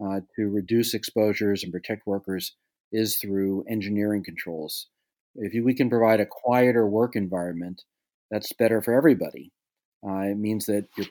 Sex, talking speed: male, 155 wpm